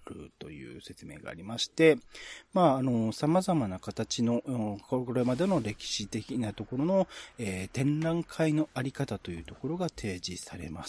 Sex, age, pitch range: male, 40-59, 105-160 Hz